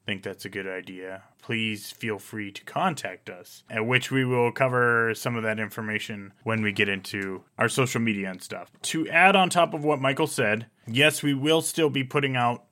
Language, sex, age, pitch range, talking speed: English, male, 20-39, 110-140 Hz, 210 wpm